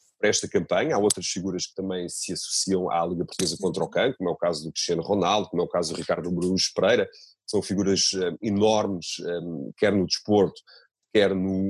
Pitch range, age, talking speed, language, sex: 95-115 Hz, 30-49, 200 wpm, Portuguese, male